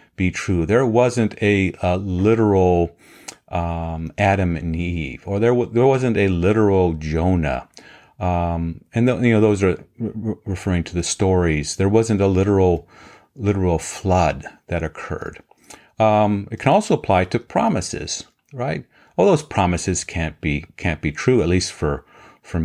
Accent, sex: American, male